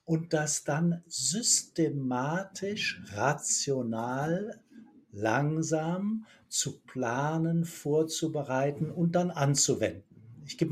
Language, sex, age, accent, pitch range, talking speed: German, male, 60-79, German, 135-175 Hz, 80 wpm